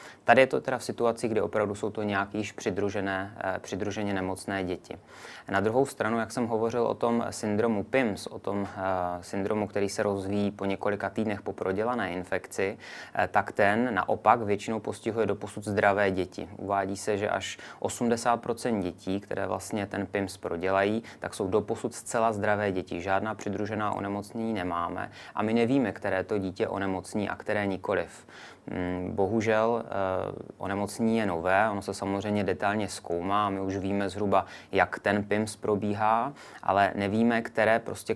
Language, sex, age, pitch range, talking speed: Czech, male, 20-39, 95-105 Hz, 150 wpm